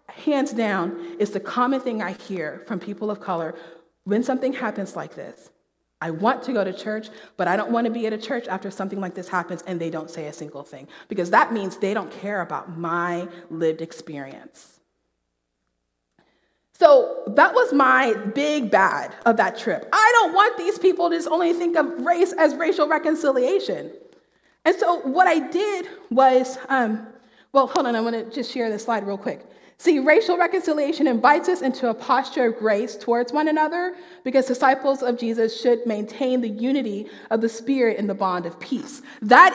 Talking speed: 190 wpm